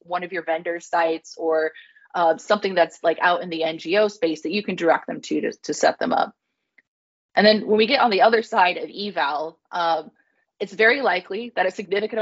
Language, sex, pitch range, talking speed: English, female, 165-205 Hz, 215 wpm